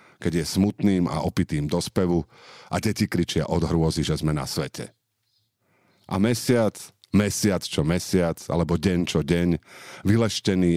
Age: 50-69